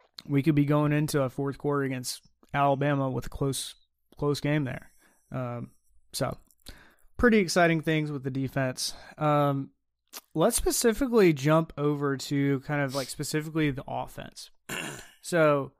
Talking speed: 140 wpm